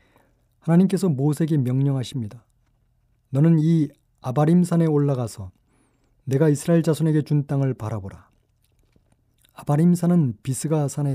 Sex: male